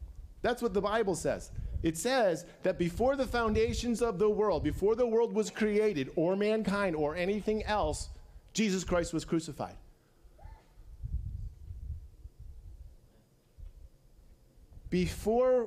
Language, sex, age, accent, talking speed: English, male, 40-59, American, 110 wpm